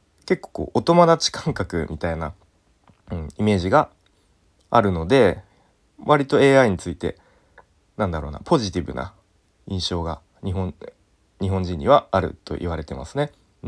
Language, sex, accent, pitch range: Japanese, male, native, 85-115 Hz